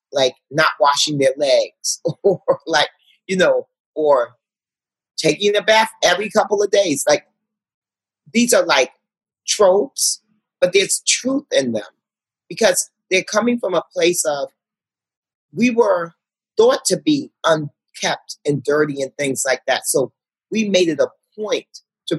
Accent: American